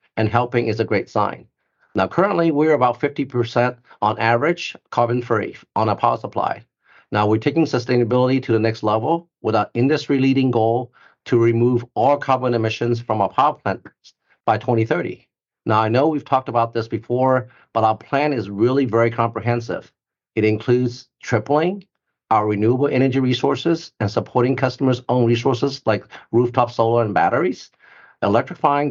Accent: American